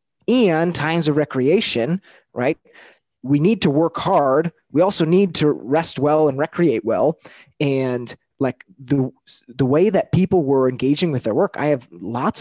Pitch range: 130-155 Hz